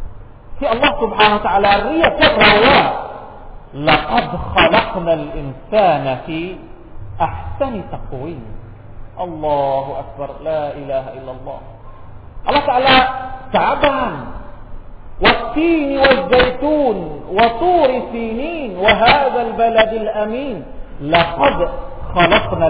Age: 50-69